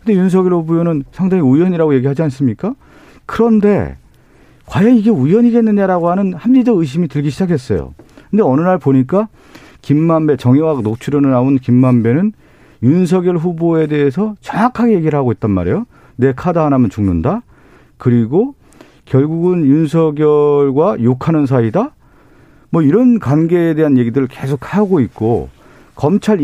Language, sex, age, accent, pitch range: Korean, male, 40-59, native, 130-185 Hz